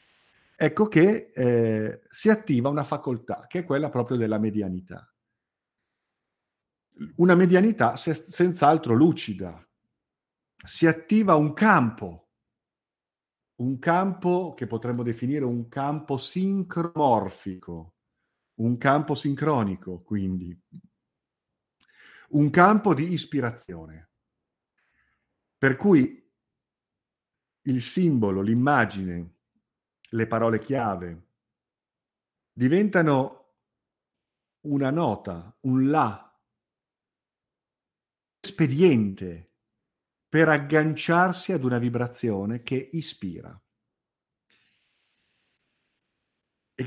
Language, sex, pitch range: Italian, male, 110-160 Hz